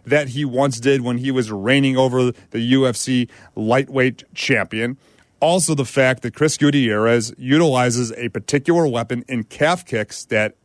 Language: English